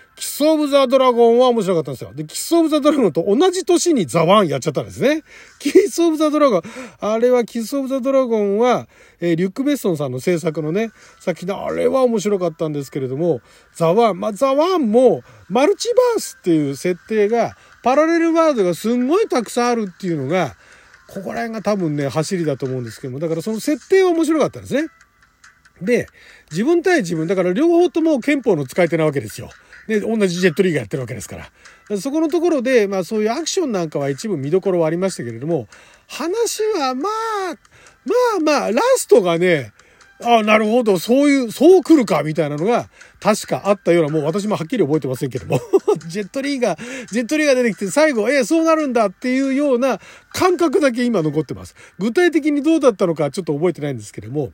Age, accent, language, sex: 40-59, native, Japanese, male